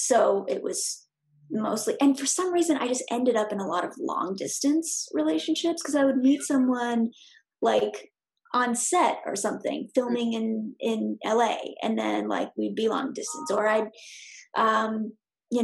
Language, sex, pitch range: English, female, 230-310 Hz